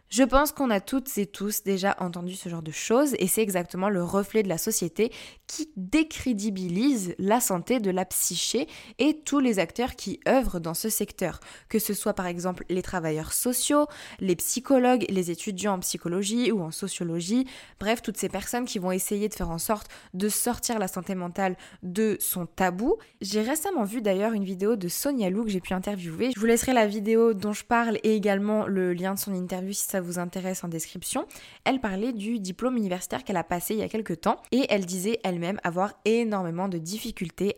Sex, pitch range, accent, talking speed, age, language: female, 185-225 Hz, French, 205 wpm, 20-39, French